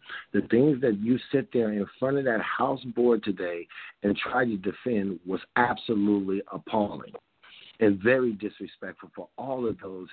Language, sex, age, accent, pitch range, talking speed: English, male, 50-69, American, 105-135 Hz, 160 wpm